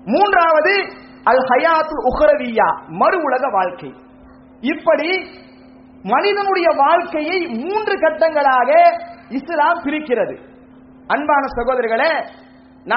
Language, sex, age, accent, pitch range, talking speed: English, male, 30-49, Indian, 255-335 Hz, 95 wpm